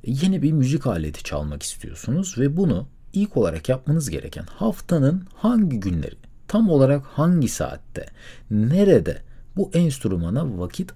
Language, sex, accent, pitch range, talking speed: Turkish, male, native, 90-140 Hz, 125 wpm